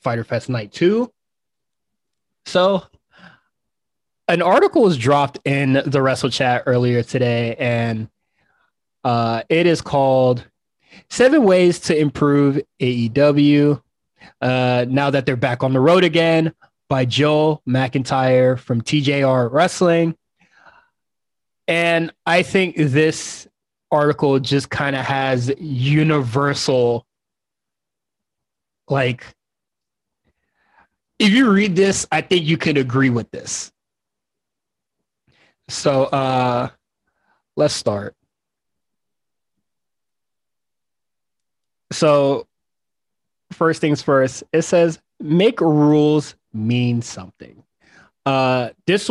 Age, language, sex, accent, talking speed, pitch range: 20-39, English, male, American, 95 wpm, 125-160 Hz